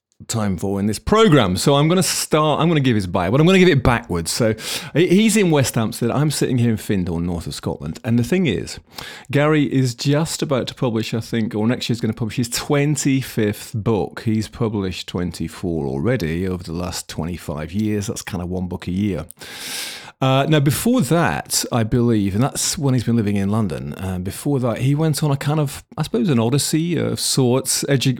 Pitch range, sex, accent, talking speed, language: 100-135 Hz, male, British, 220 wpm, English